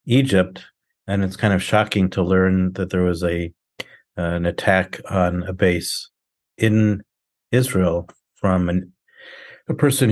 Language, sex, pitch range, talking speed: English, male, 90-105 Hz, 140 wpm